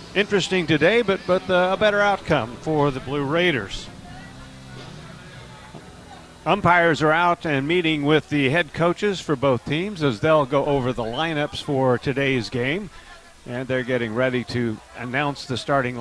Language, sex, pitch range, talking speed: English, male, 130-165 Hz, 150 wpm